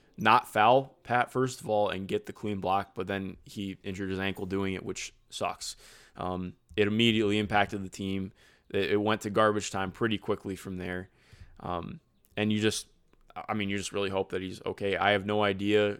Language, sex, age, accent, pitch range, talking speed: English, male, 20-39, American, 95-110 Hz, 205 wpm